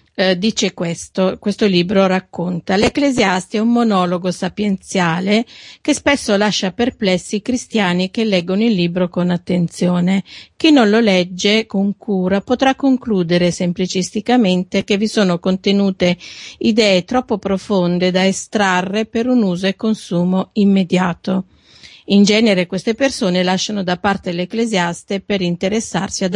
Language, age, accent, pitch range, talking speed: Italian, 40-59, native, 180-215 Hz, 130 wpm